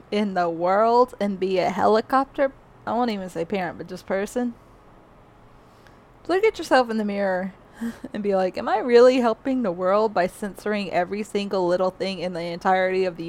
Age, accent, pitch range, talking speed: 20-39, American, 185-230 Hz, 185 wpm